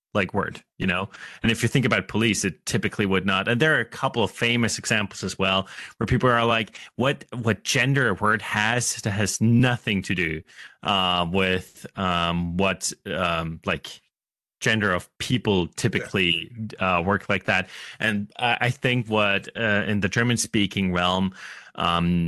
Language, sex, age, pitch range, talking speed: English, male, 30-49, 95-115 Hz, 170 wpm